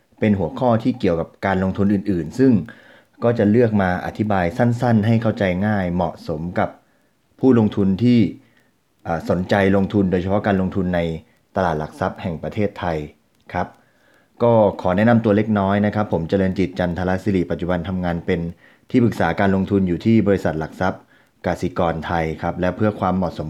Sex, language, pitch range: male, Thai, 90-105 Hz